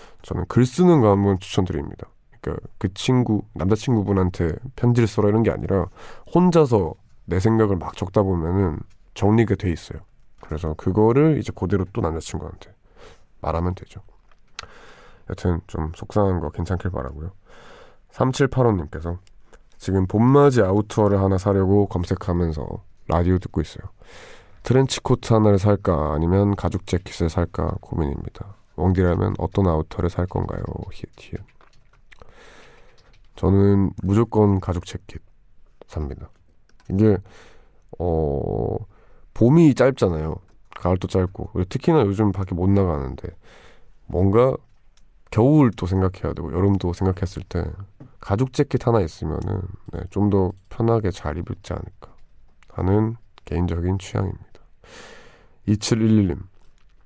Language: Korean